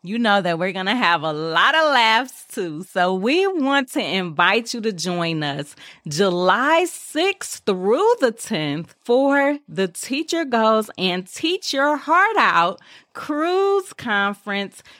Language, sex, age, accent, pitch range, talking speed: English, female, 30-49, American, 195-305 Hz, 150 wpm